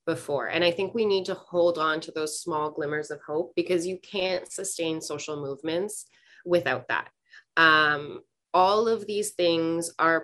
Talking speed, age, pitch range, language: 170 wpm, 20-39, 150-180 Hz, English